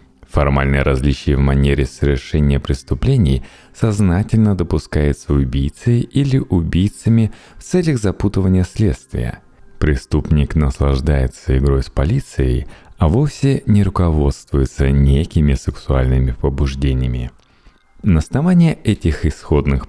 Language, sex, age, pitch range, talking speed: Russian, male, 30-49, 70-110 Hz, 95 wpm